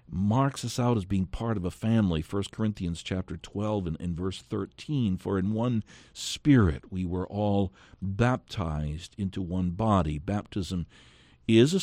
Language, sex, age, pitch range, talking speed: English, male, 60-79, 85-135 Hz, 150 wpm